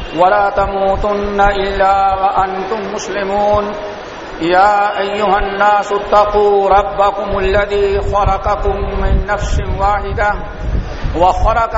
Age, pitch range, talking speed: 50-69, 200-220 Hz, 80 wpm